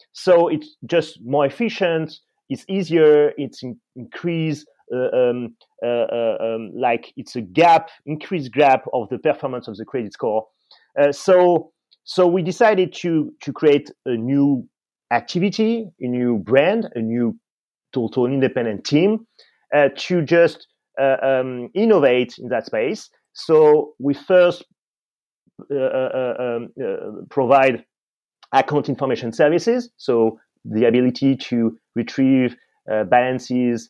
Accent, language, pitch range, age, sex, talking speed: French, English, 120-170 Hz, 30-49, male, 130 wpm